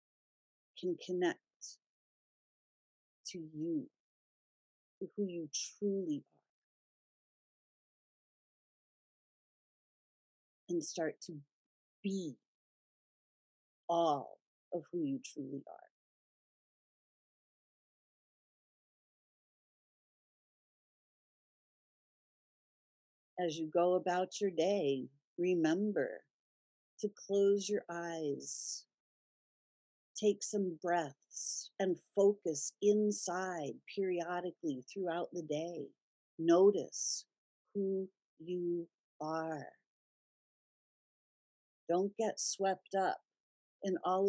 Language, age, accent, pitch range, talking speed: English, 50-69, American, 170-200 Hz, 70 wpm